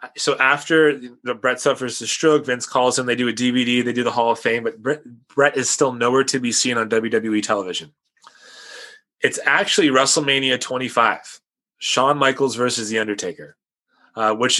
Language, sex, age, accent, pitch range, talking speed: English, male, 20-39, American, 115-140 Hz, 175 wpm